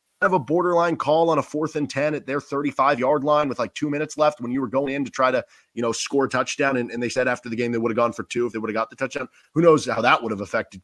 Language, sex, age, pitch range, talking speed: English, male, 30-49, 120-155 Hz, 320 wpm